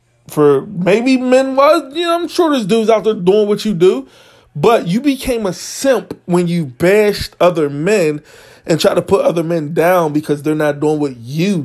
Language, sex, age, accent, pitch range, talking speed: English, male, 20-39, American, 160-210 Hz, 205 wpm